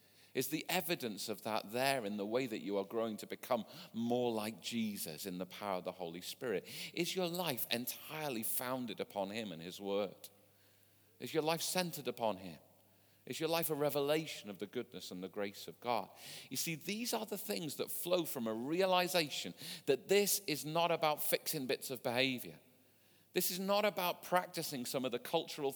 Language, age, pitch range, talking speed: English, 40-59, 110-165 Hz, 195 wpm